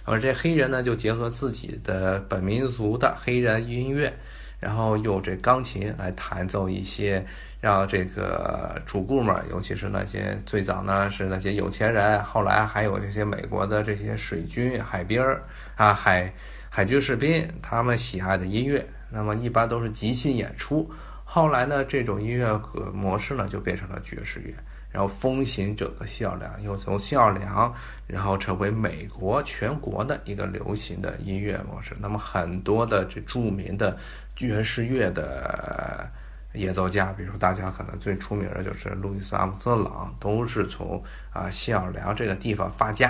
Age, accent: 20-39, native